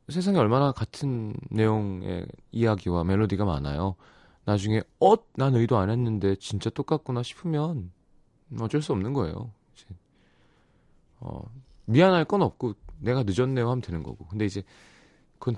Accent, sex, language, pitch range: native, male, Korean, 95-155 Hz